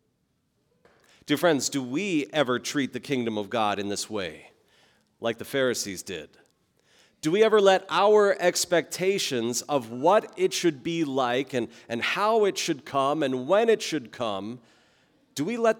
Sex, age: male, 40-59